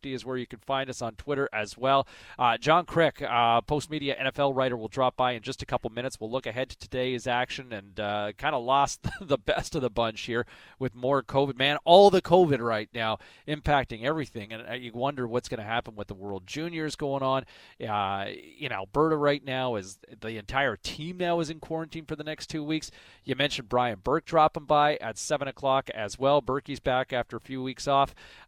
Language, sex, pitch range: English, male, 110-145 Hz